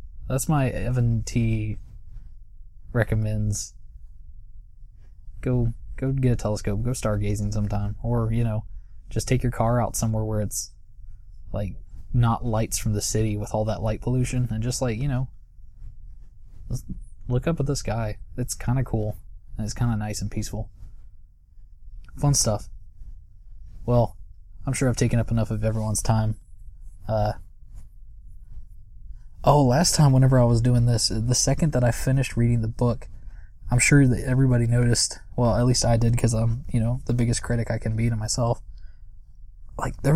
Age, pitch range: 20-39, 100-120 Hz